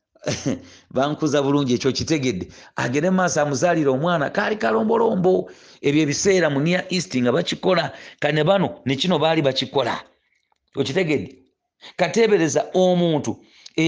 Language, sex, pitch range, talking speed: English, male, 140-180 Hz, 115 wpm